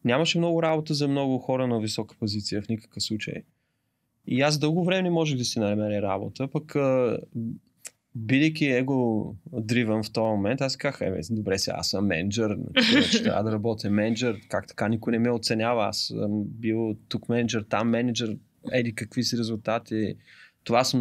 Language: Bulgarian